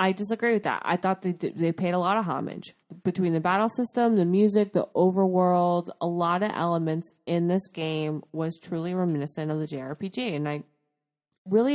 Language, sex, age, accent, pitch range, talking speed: English, female, 20-39, American, 170-230 Hz, 190 wpm